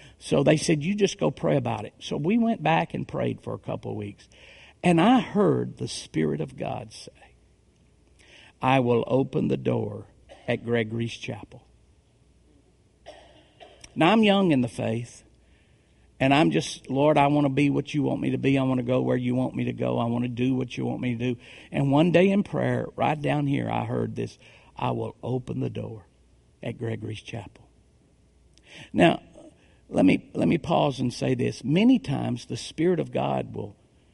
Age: 50-69